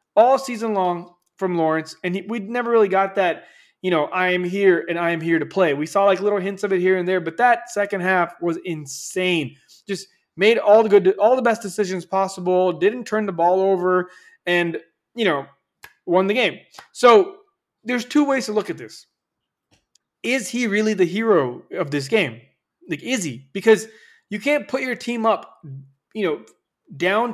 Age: 20-39